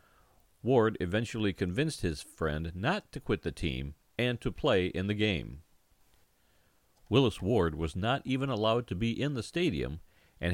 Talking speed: 160 wpm